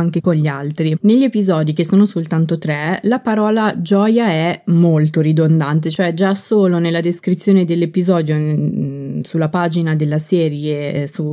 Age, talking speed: 20-39, 150 wpm